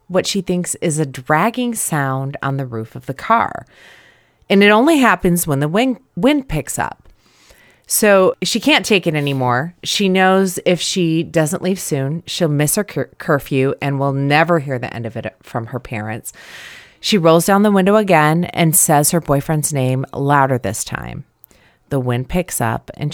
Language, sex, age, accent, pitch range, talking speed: English, female, 30-49, American, 135-185 Hz, 180 wpm